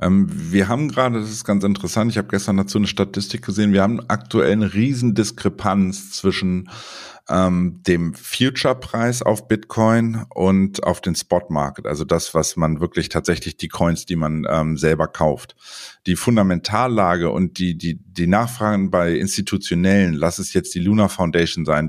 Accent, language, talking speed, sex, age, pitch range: German, German, 165 wpm, male, 50-69, 90-105 Hz